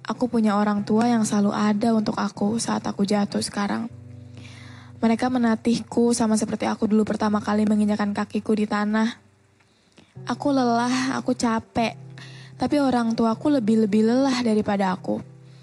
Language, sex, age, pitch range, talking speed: Indonesian, female, 20-39, 200-230 Hz, 140 wpm